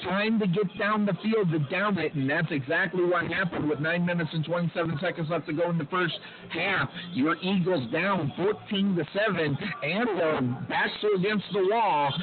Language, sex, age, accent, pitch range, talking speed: English, male, 50-69, American, 155-200 Hz, 185 wpm